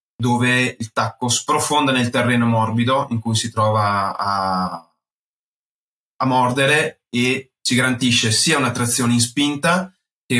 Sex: male